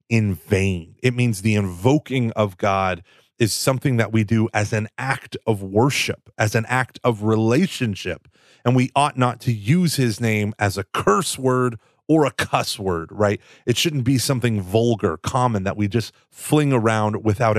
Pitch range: 105-125 Hz